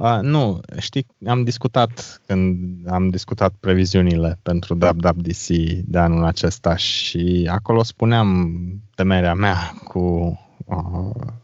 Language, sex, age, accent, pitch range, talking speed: Romanian, male, 20-39, native, 90-115 Hz, 110 wpm